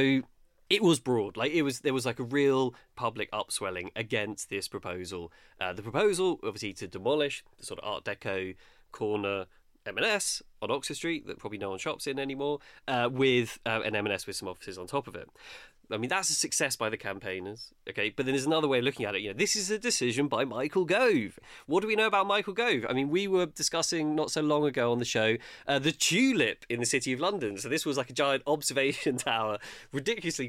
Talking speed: 225 wpm